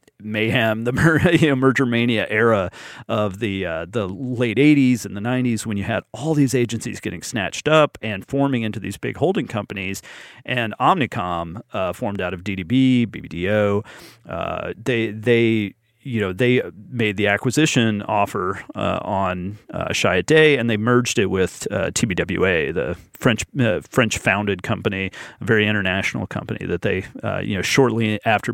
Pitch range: 105-130 Hz